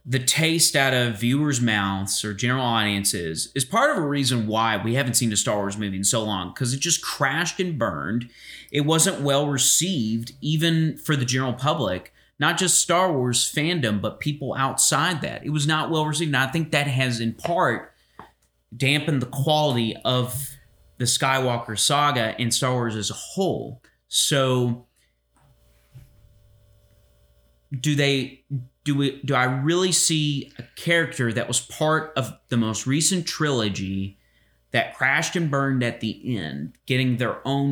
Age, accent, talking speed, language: 30-49, American, 160 wpm, English